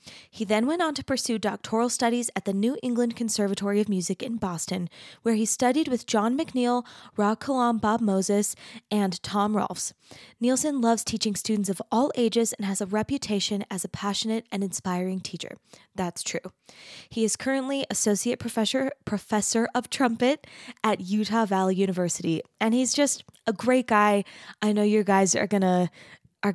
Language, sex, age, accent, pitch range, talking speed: English, female, 20-39, American, 200-250 Hz, 170 wpm